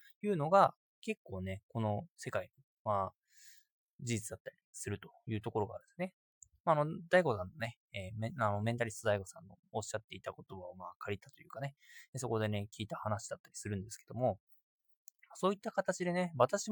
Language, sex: Japanese, male